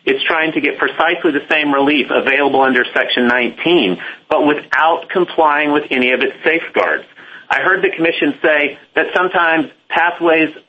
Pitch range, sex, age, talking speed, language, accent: 135-175 Hz, male, 40-59, 155 wpm, English, American